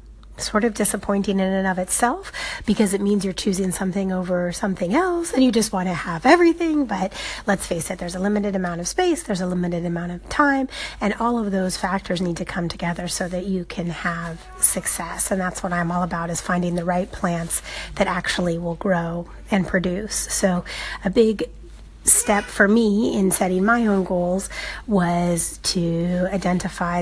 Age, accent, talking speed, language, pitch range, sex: 30-49, American, 190 wpm, English, 180-210 Hz, female